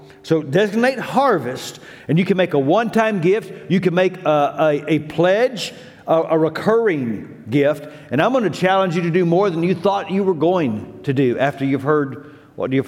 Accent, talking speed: American, 195 wpm